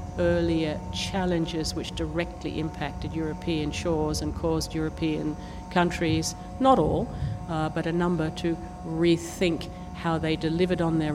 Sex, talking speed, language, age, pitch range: female, 130 wpm, English, 60-79, 150-170 Hz